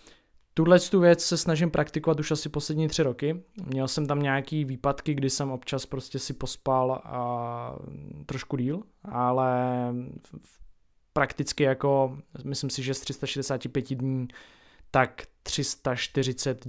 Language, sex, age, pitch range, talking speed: Czech, male, 20-39, 125-145 Hz, 135 wpm